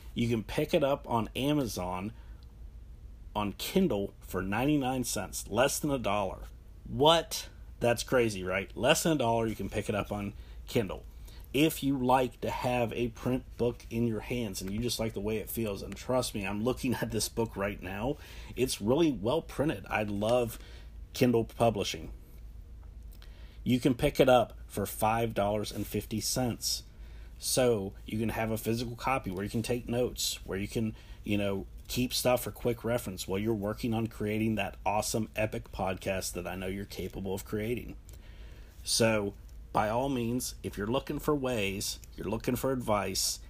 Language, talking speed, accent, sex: English, 170 wpm, American, male